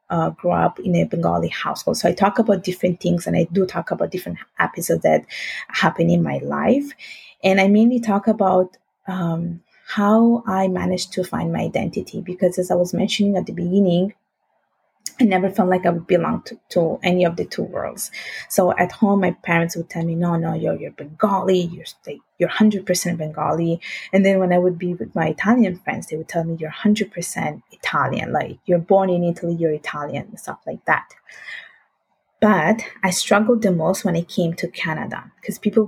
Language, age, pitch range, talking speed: English, 20-39, 175-210 Hz, 200 wpm